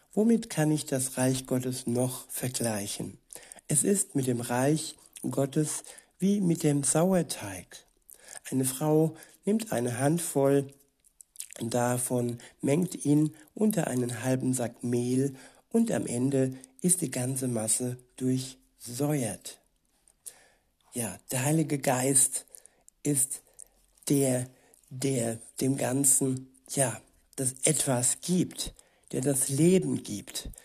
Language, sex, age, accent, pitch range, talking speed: German, male, 60-79, German, 130-150 Hz, 110 wpm